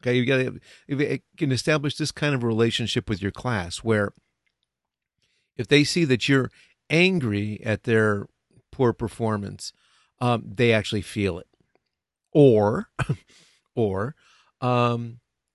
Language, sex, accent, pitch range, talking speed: English, male, American, 105-130 Hz, 130 wpm